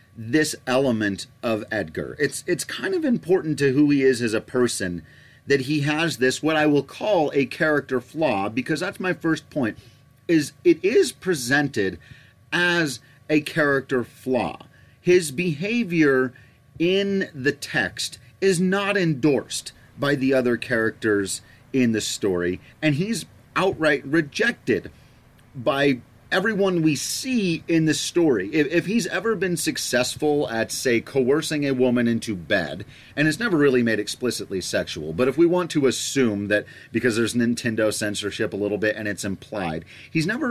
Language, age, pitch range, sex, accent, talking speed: English, 30-49, 115-155 Hz, male, American, 155 wpm